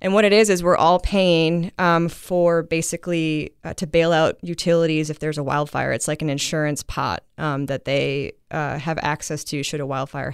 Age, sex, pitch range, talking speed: 20-39, female, 150-175 Hz, 205 wpm